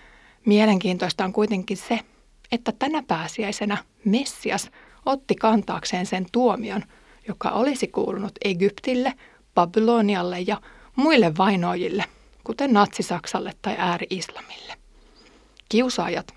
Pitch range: 185-230 Hz